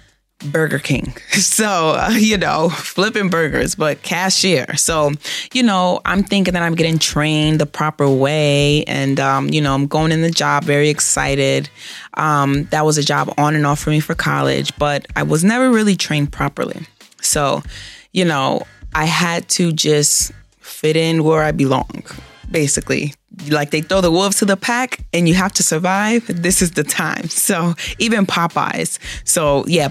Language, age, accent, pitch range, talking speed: English, 20-39, American, 145-185 Hz, 175 wpm